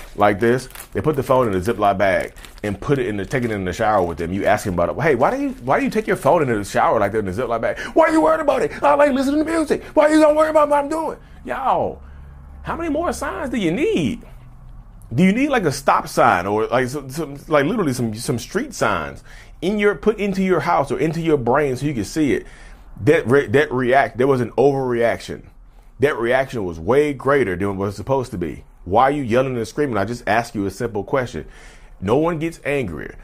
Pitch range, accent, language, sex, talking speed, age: 105-145 Hz, American, English, male, 260 wpm, 30-49